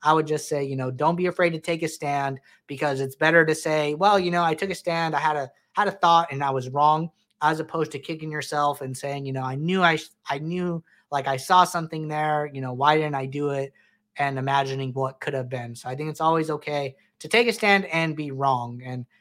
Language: English